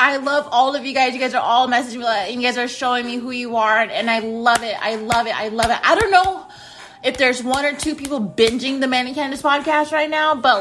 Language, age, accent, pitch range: English, 30-49, American, 220-275 Hz